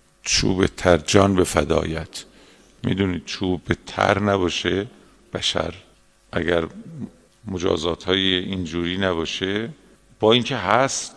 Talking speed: 95 wpm